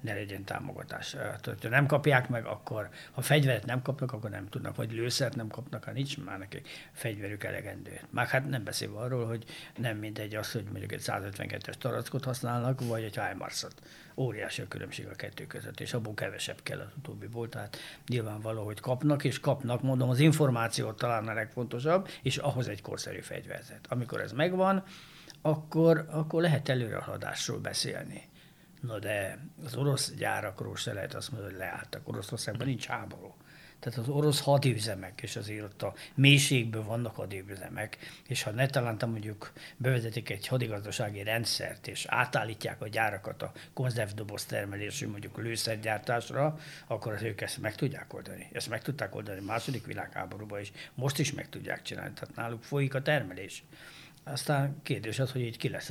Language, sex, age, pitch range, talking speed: Hungarian, male, 60-79, 110-140 Hz, 170 wpm